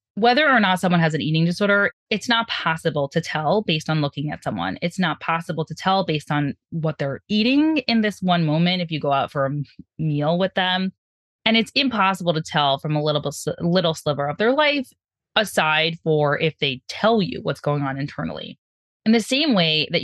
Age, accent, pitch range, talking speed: 20-39, American, 150-215 Hz, 205 wpm